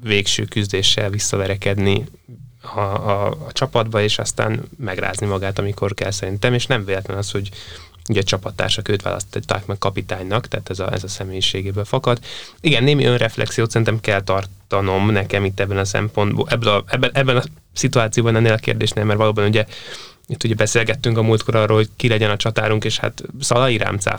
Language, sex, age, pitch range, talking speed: Hungarian, male, 20-39, 100-120 Hz, 175 wpm